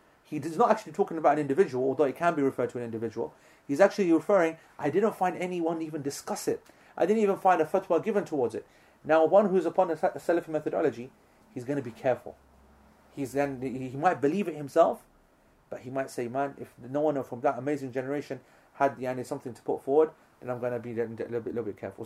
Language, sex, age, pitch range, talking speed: English, male, 30-49, 125-155 Hz, 230 wpm